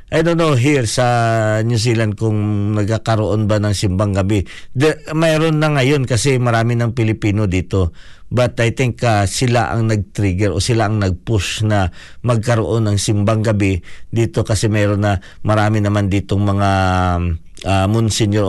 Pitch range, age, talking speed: 100-120 Hz, 50-69, 155 wpm